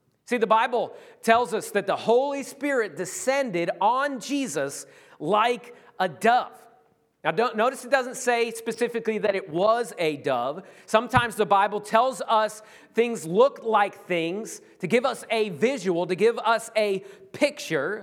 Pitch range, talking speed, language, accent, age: 180-245 Hz, 150 wpm, English, American, 40-59